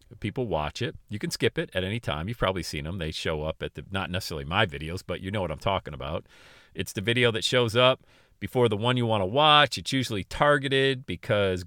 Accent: American